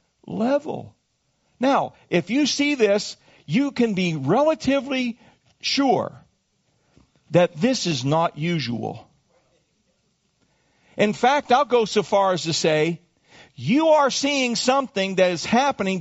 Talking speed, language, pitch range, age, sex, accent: 120 wpm, English, 170-250 Hz, 50-69, male, American